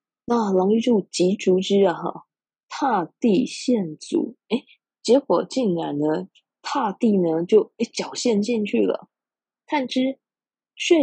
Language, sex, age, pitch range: Chinese, female, 20-39, 170-240 Hz